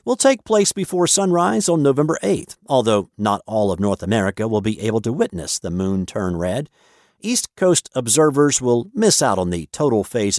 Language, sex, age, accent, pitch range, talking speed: English, male, 50-69, American, 110-160 Hz, 190 wpm